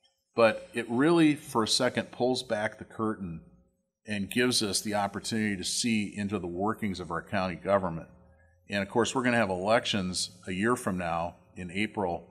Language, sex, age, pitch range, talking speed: English, male, 40-59, 95-115 Hz, 185 wpm